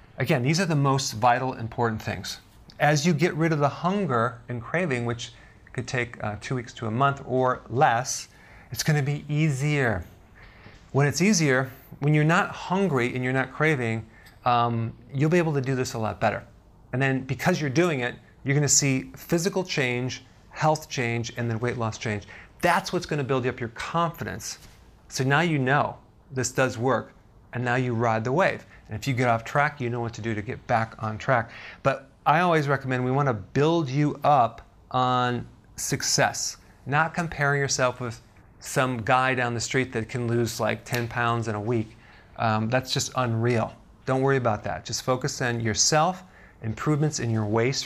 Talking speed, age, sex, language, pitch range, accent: 195 wpm, 40-59, male, English, 115-140 Hz, American